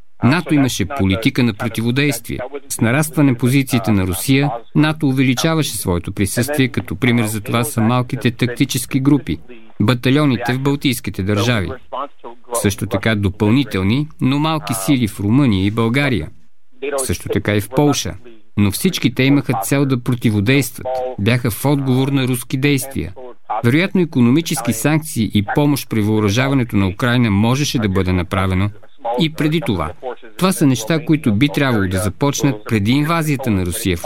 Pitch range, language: 105-140 Hz, Bulgarian